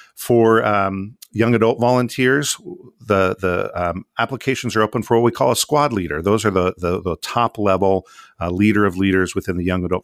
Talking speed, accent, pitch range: 190 wpm, American, 95-115 Hz